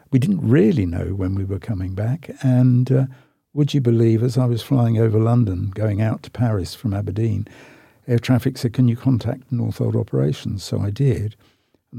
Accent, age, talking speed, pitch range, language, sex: British, 60-79, 195 wpm, 105-125 Hz, English, male